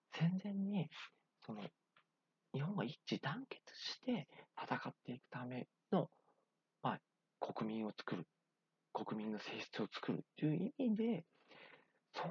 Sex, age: male, 40-59